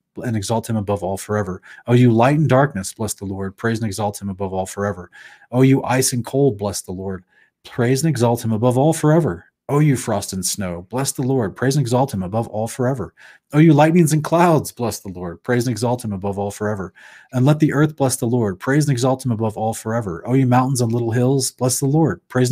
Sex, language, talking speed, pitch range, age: male, English, 240 wpm, 105-130 Hz, 30-49